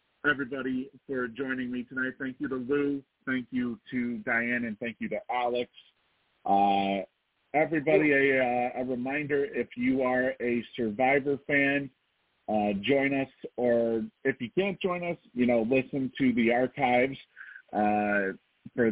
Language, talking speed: English, 145 wpm